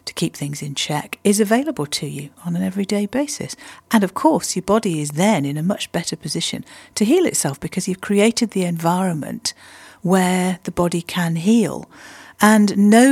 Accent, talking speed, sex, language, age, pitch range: British, 185 wpm, female, English, 50-69, 150-215 Hz